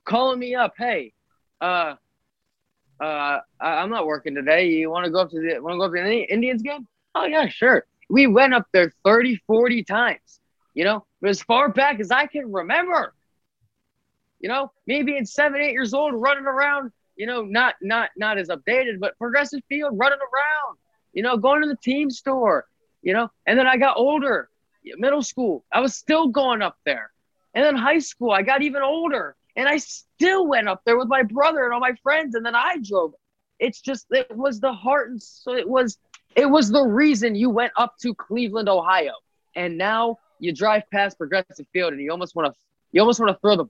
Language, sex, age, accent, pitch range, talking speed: English, male, 20-39, American, 180-270 Hz, 210 wpm